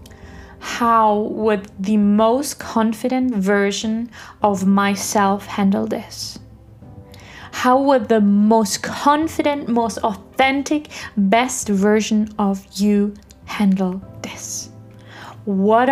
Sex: female